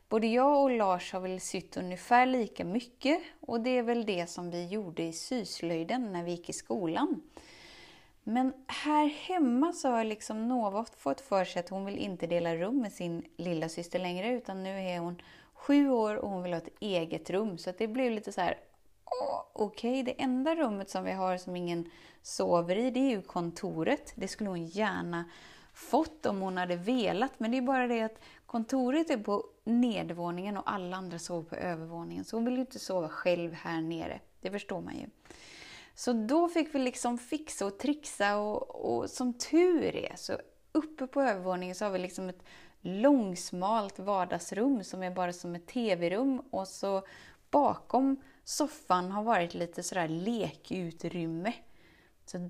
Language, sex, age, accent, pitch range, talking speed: Swedish, female, 30-49, native, 175-250 Hz, 185 wpm